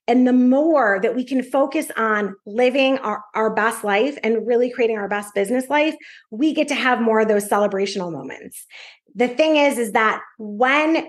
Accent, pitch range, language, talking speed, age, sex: American, 230-285 Hz, English, 190 wpm, 30-49, female